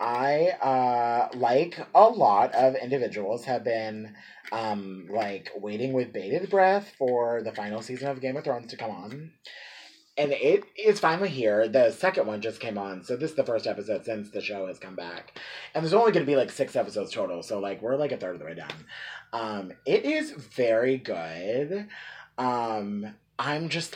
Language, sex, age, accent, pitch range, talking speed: English, male, 30-49, American, 105-155 Hz, 195 wpm